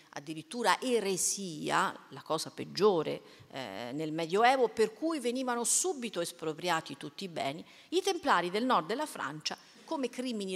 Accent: native